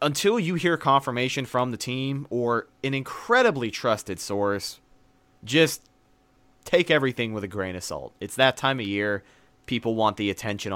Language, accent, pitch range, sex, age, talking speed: English, American, 100-130 Hz, male, 30-49, 160 wpm